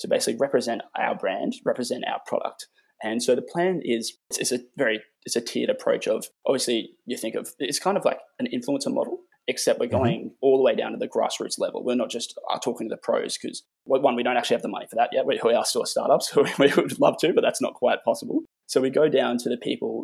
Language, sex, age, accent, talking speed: English, male, 20-39, Australian, 245 wpm